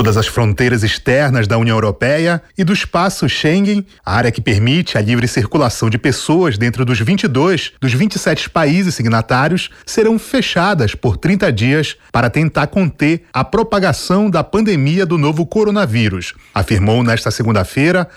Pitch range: 120-190 Hz